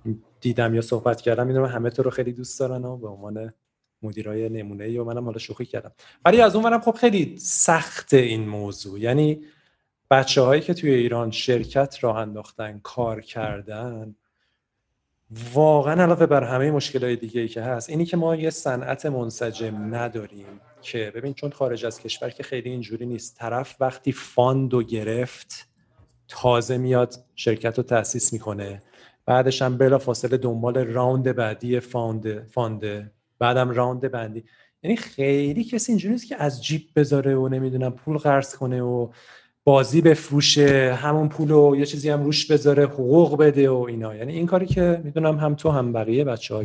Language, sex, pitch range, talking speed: Persian, male, 110-140 Hz, 160 wpm